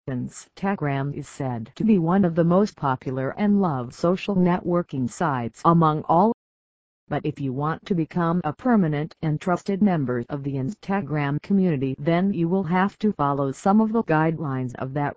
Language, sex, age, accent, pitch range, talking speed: English, female, 50-69, American, 140-180 Hz, 175 wpm